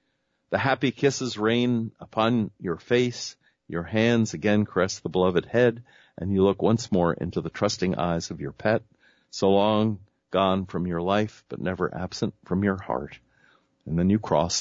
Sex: male